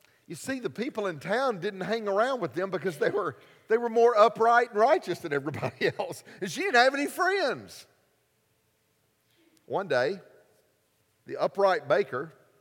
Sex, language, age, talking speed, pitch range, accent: male, English, 50-69, 155 wpm, 140-215 Hz, American